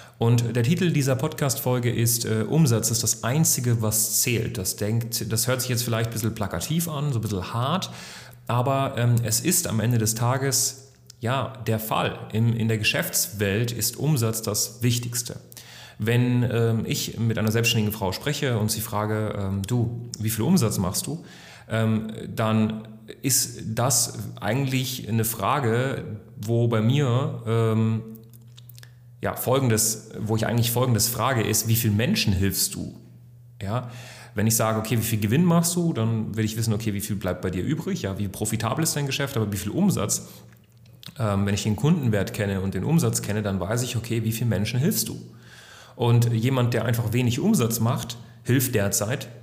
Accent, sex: German, male